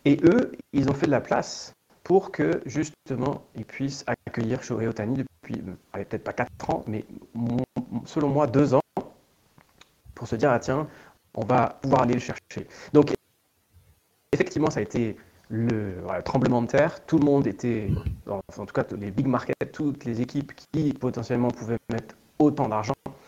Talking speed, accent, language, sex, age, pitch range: 175 wpm, French, French, male, 30-49, 115-140 Hz